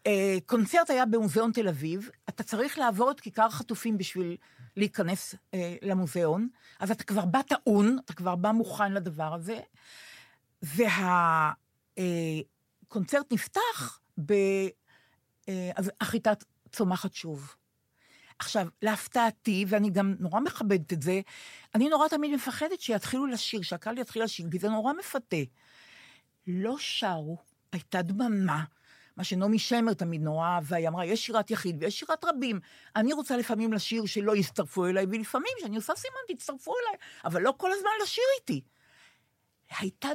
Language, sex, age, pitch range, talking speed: Hebrew, female, 50-69, 180-230 Hz, 135 wpm